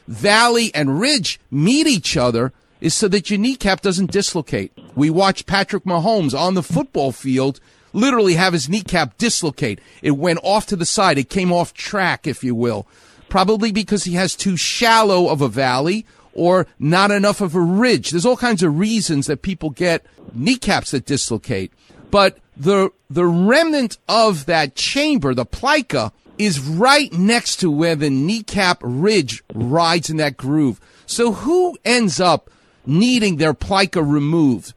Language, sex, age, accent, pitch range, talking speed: English, male, 40-59, American, 145-220 Hz, 160 wpm